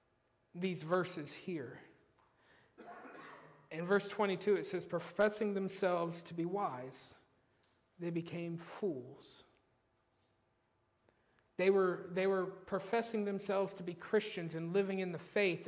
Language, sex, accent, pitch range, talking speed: English, male, American, 165-200 Hz, 115 wpm